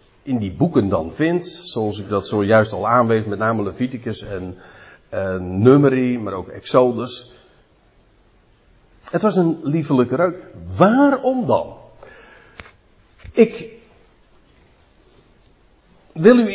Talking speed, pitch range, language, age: 110 wpm, 110-175 Hz, Dutch, 50-69